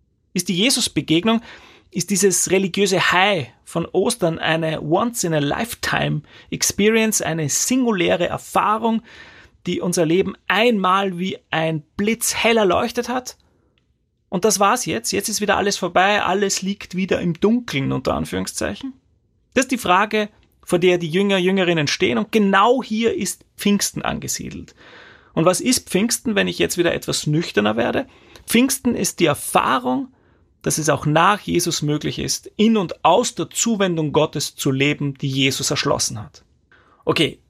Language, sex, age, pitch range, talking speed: German, male, 30-49, 155-215 Hz, 150 wpm